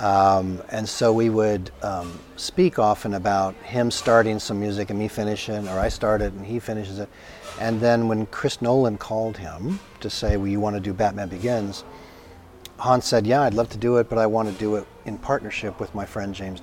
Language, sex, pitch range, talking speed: English, male, 95-120 Hz, 215 wpm